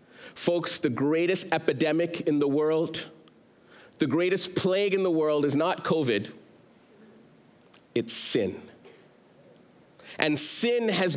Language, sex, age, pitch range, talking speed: English, male, 40-59, 155-195 Hz, 115 wpm